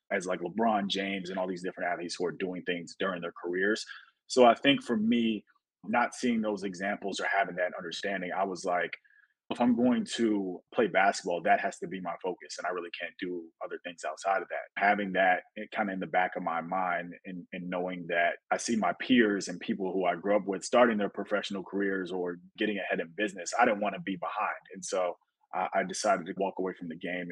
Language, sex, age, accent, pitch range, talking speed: English, male, 20-39, American, 90-105 Hz, 235 wpm